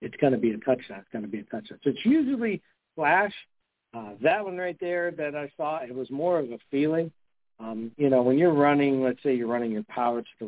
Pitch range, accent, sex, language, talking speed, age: 115-140 Hz, American, male, English, 250 wpm, 50-69